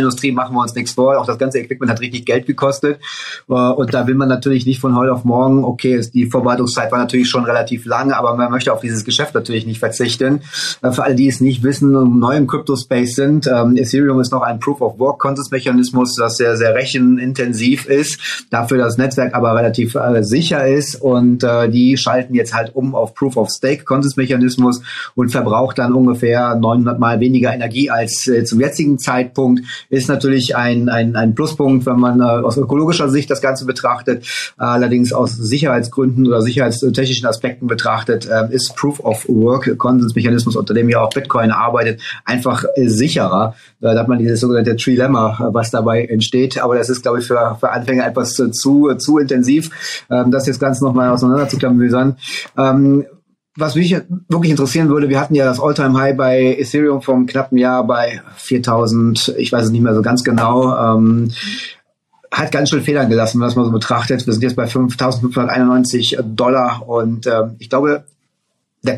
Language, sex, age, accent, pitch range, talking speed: German, male, 30-49, German, 120-135 Hz, 180 wpm